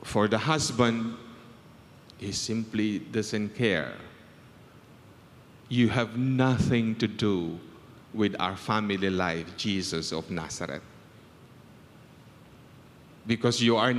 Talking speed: 95 wpm